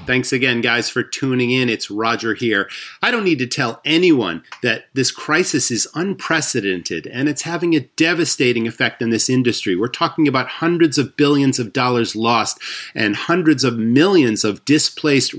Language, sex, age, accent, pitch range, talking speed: English, male, 40-59, American, 115-150 Hz, 170 wpm